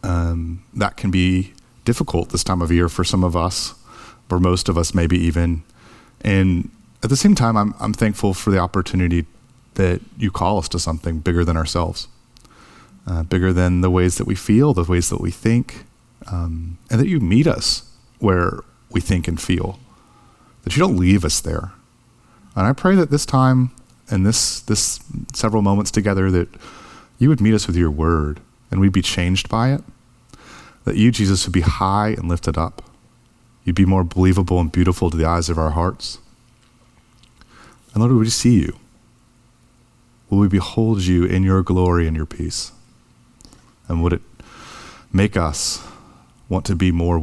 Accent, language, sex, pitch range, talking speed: American, English, male, 85-115 Hz, 180 wpm